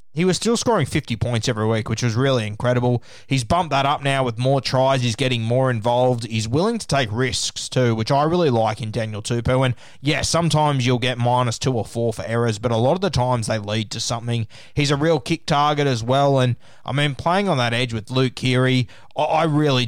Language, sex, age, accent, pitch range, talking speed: English, male, 20-39, Australian, 120-145 Hz, 230 wpm